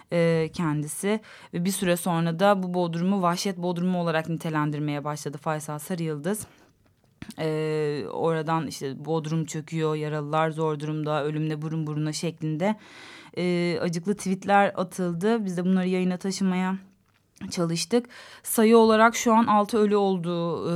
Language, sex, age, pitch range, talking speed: Turkish, female, 30-49, 165-185 Hz, 125 wpm